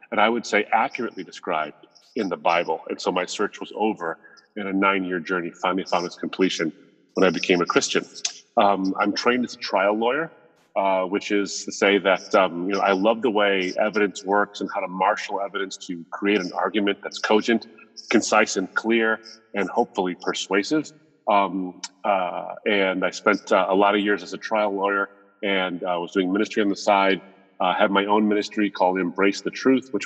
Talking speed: 200 wpm